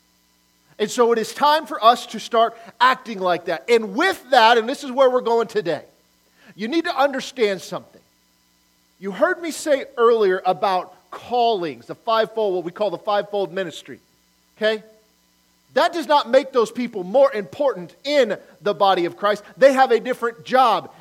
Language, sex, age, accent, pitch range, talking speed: English, male, 40-59, American, 175-270 Hz, 175 wpm